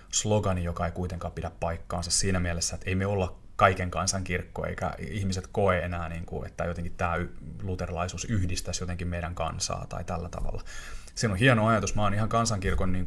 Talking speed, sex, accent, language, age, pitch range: 170 wpm, male, native, Finnish, 30-49, 90-110 Hz